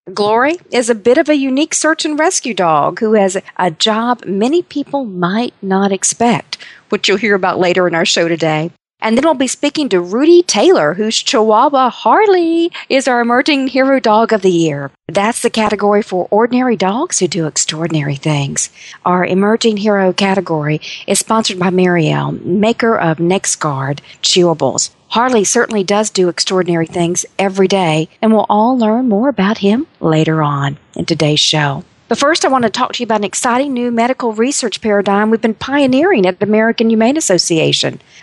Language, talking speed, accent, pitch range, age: English, 175 wpm, American, 180-240 Hz, 50-69